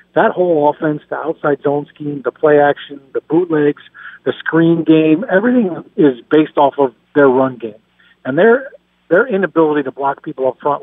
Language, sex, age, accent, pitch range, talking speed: English, male, 50-69, American, 135-155 Hz, 175 wpm